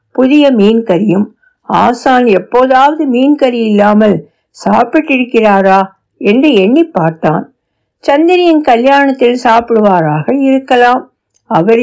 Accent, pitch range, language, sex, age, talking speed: native, 195-275 Hz, Tamil, female, 60-79, 85 wpm